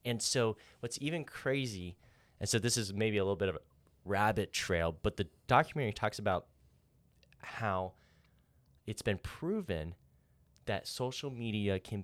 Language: English